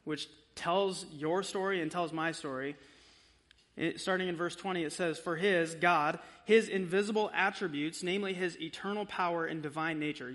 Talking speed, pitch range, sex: 155 wpm, 150-200 Hz, male